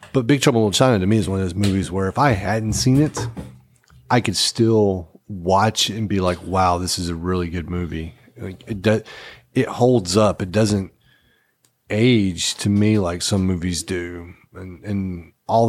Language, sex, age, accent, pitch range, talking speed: English, male, 30-49, American, 90-115 Hz, 195 wpm